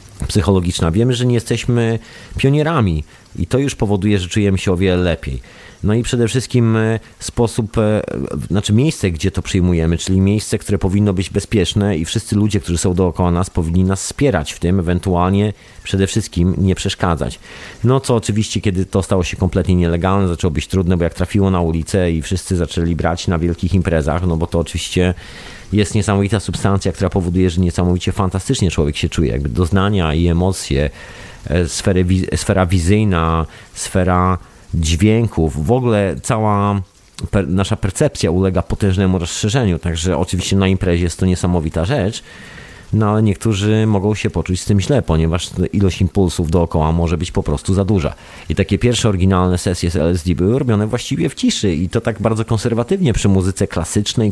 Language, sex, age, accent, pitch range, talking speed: Polish, male, 30-49, native, 90-105 Hz, 165 wpm